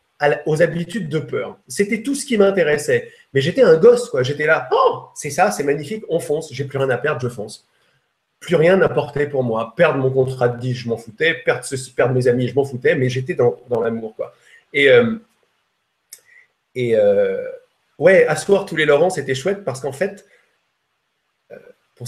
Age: 30-49